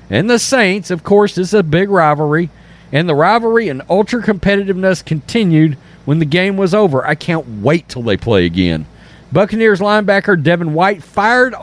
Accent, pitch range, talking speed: American, 160-215 Hz, 170 wpm